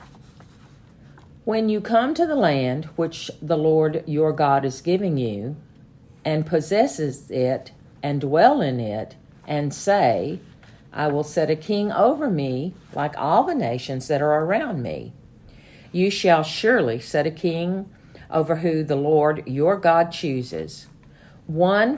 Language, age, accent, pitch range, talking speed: English, 50-69, American, 140-175 Hz, 140 wpm